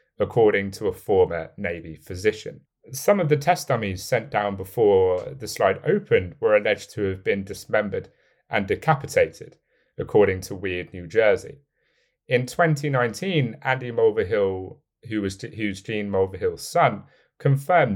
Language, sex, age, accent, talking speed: English, male, 30-49, British, 140 wpm